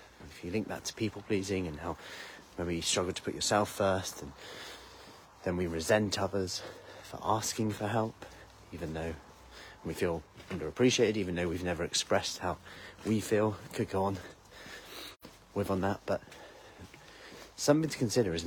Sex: male